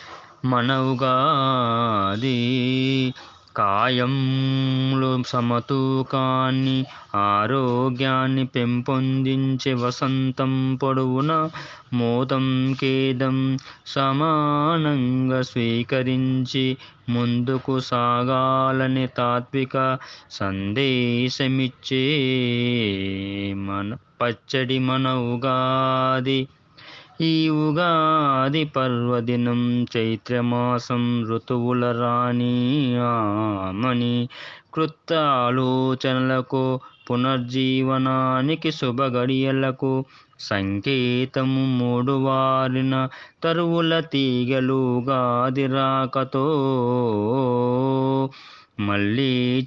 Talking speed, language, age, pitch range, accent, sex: 40 wpm, Telugu, 20-39, 125-135 Hz, native, male